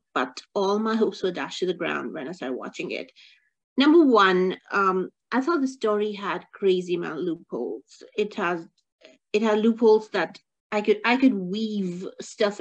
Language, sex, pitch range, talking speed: English, female, 185-245 Hz, 175 wpm